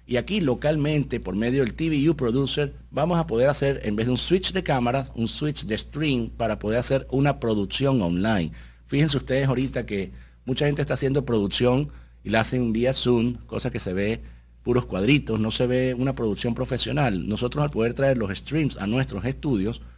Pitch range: 105-135 Hz